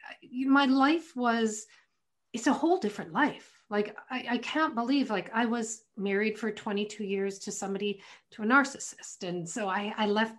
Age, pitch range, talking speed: 40-59, 200-270 Hz, 175 wpm